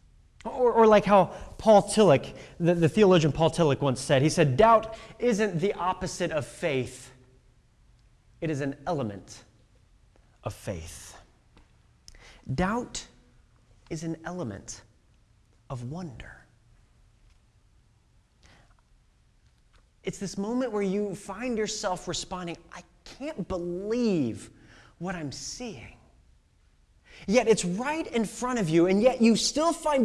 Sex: male